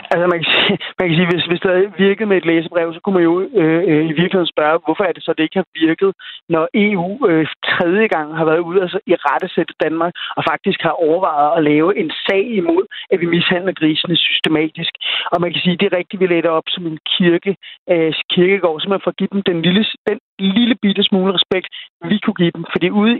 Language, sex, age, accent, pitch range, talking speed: Danish, male, 30-49, native, 165-190 Hz, 240 wpm